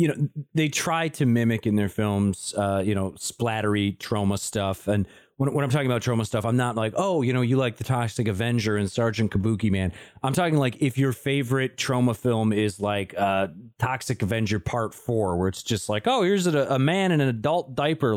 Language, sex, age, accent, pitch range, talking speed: English, male, 30-49, American, 105-140 Hz, 220 wpm